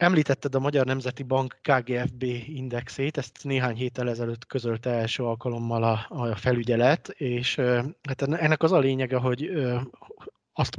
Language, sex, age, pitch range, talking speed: Hungarian, male, 20-39, 120-140 Hz, 135 wpm